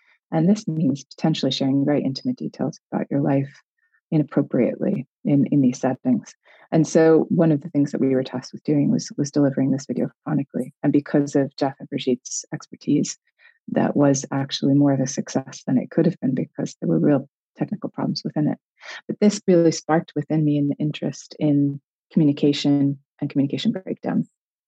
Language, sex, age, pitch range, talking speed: English, female, 30-49, 140-165 Hz, 180 wpm